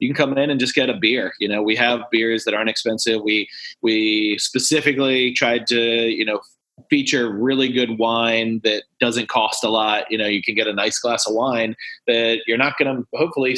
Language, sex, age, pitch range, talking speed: English, male, 30-49, 110-130 Hz, 215 wpm